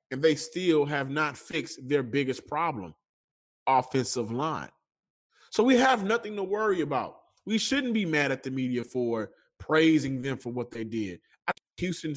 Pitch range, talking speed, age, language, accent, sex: 120-165 Hz, 165 wpm, 20-39, English, American, male